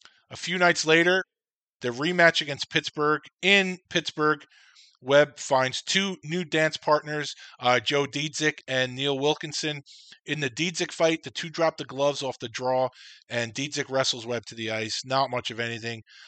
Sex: male